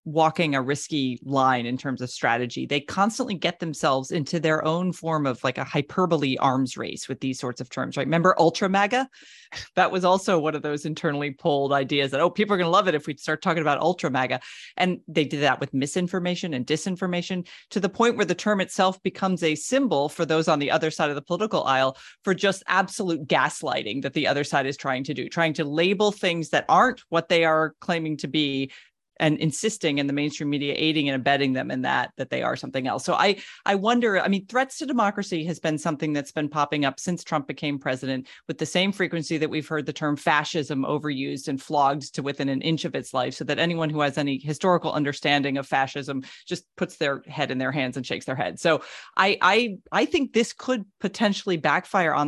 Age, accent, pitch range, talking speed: 30-49, American, 140-185 Hz, 225 wpm